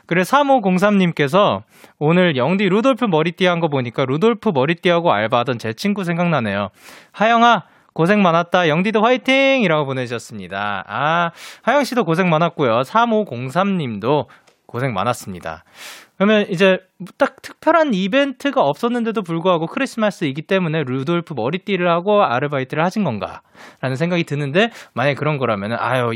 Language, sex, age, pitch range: Korean, male, 20-39, 135-210 Hz